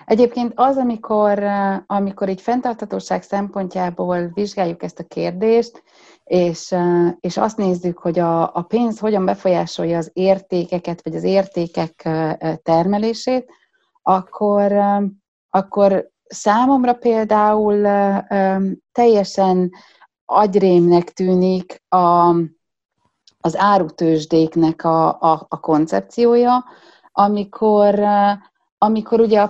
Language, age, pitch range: Hungarian, 30-49, 175-215 Hz